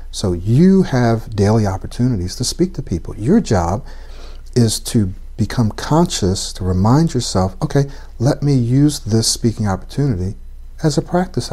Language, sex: English, male